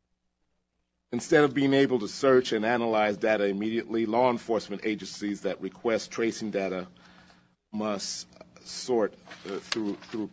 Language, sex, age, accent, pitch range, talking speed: English, male, 40-59, American, 85-110 Hz, 120 wpm